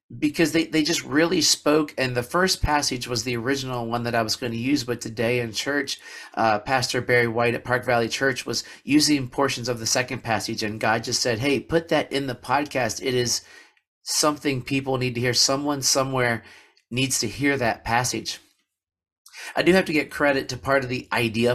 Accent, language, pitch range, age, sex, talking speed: American, English, 115-135 Hz, 40-59, male, 205 wpm